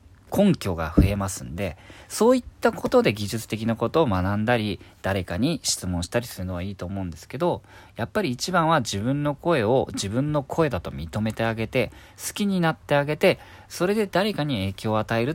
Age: 40-59